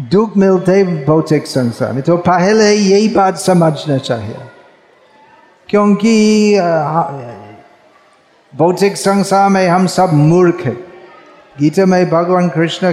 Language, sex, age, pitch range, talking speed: Hindi, male, 50-69, 165-195 Hz, 105 wpm